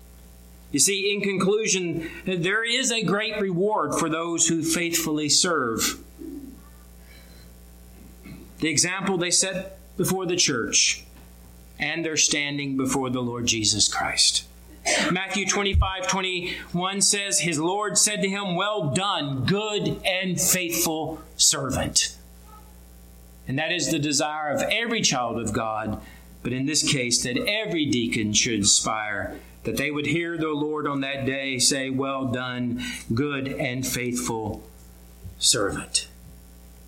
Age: 40-59